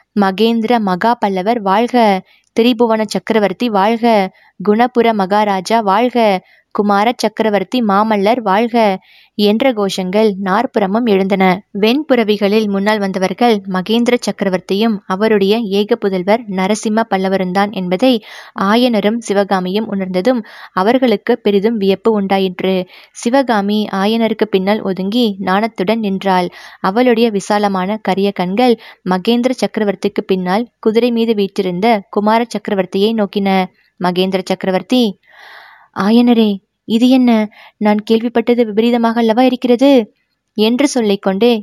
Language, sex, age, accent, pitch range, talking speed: Tamil, female, 20-39, native, 195-230 Hz, 95 wpm